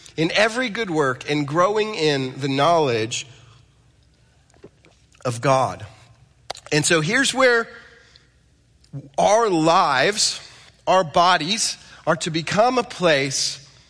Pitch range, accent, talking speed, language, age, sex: 145-235 Hz, American, 105 wpm, English, 30-49, male